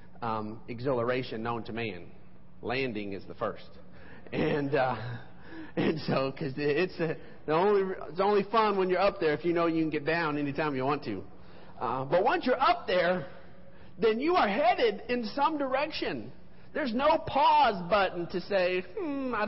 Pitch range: 135-230 Hz